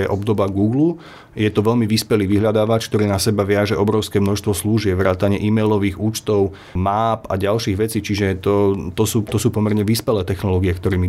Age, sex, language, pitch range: 30-49, male, Slovak, 100-115 Hz